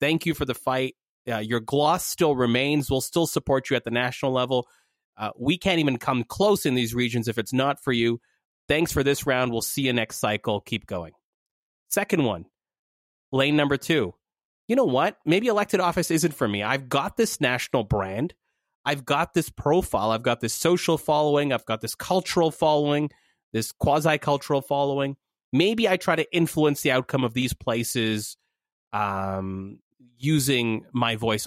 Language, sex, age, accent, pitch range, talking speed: English, male, 30-49, American, 115-155 Hz, 175 wpm